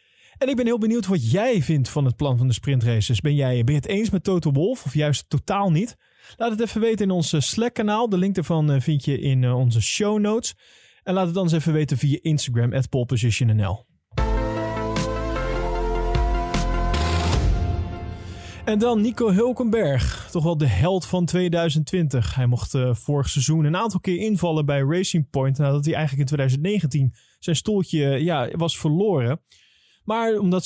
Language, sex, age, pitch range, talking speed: Dutch, male, 20-39, 135-185 Hz, 170 wpm